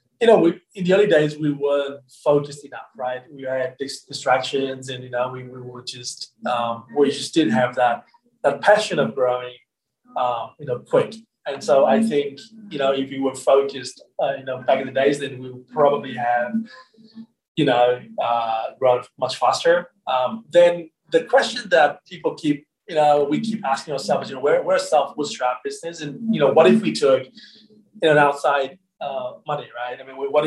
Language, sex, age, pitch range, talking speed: English, male, 20-39, 130-180 Hz, 200 wpm